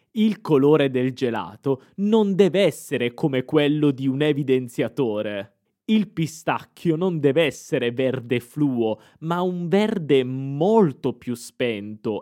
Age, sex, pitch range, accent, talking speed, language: 20-39, male, 120-160 Hz, native, 125 wpm, Italian